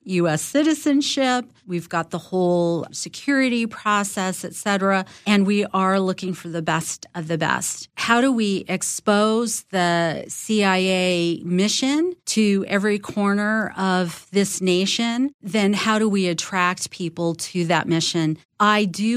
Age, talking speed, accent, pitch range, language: 40-59, 135 wpm, American, 180-210 Hz, English